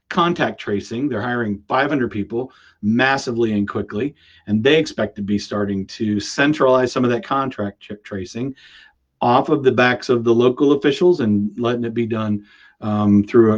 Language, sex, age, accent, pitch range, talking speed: English, male, 40-59, American, 115-135 Hz, 170 wpm